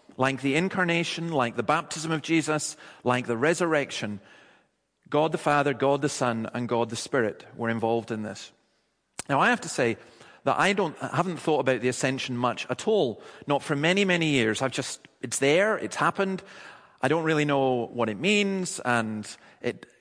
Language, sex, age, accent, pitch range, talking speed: English, male, 40-59, British, 135-175 Hz, 185 wpm